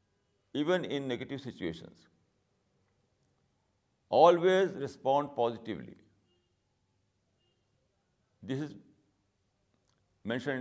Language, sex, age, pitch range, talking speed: Urdu, male, 60-79, 100-140 Hz, 55 wpm